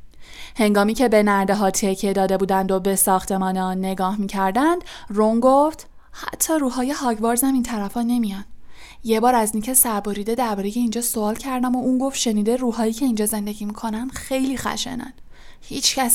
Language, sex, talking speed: Persian, female, 165 wpm